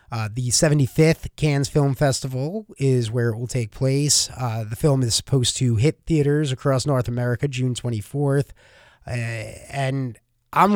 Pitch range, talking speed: 125-160 Hz, 160 wpm